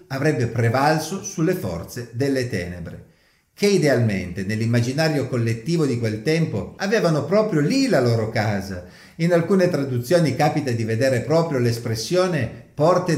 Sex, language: male, Italian